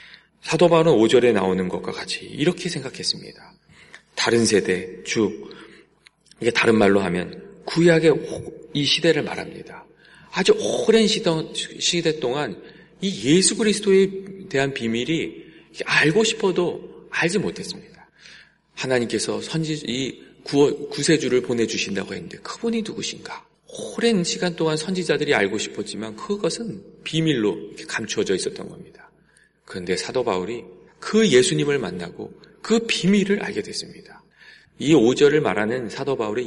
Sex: male